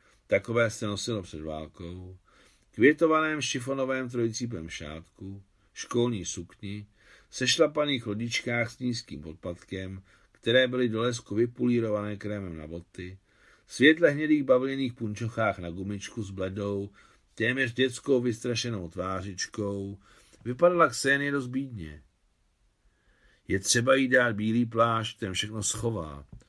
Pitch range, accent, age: 95-120 Hz, native, 50-69